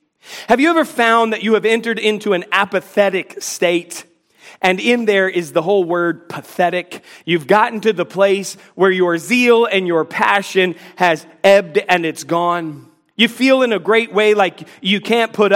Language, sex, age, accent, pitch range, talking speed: English, male, 40-59, American, 180-230 Hz, 175 wpm